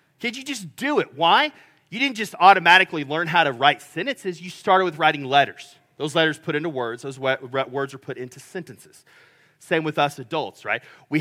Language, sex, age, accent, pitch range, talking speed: English, male, 30-49, American, 140-180 Hz, 200 wpm